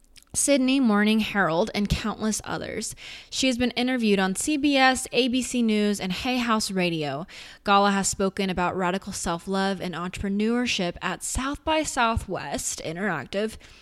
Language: English